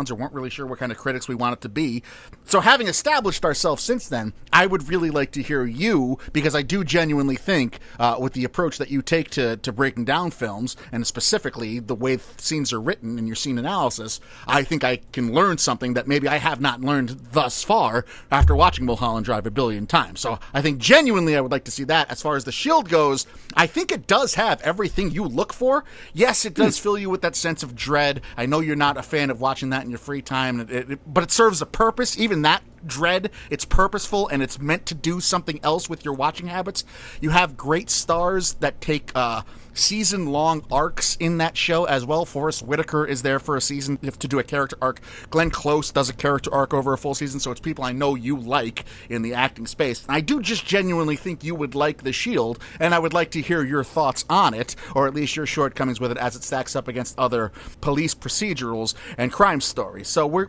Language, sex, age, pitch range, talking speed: English, male, 30-49, 125-165 Hz, 235 wpm